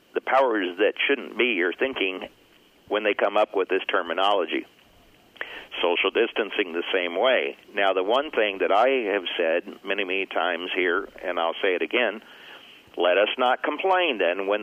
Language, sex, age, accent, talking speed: English, male, 50-69, American, 170 wpm